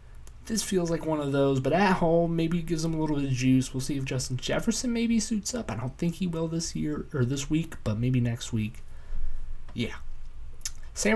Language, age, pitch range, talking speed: English, 20-39, 115-165 Hz, 220 wpm